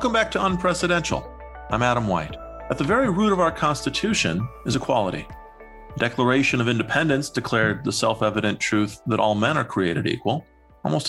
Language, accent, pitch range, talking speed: English, American, 105-140 Hz, 170 wpm